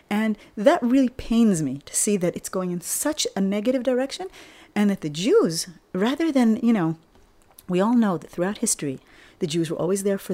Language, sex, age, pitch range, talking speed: English, female, 30-49, 175-240 Hz, 205 wpm